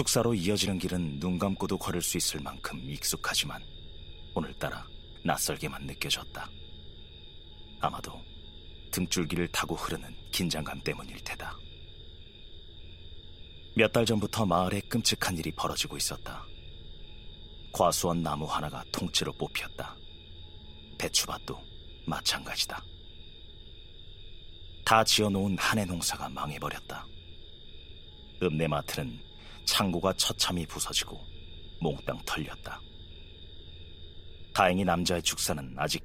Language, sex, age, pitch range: Korean, male, 40-59, 80-95 Hz